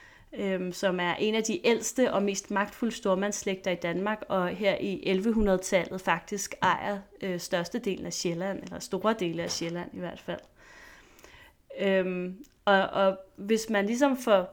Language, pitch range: Danish, 185-220 Hz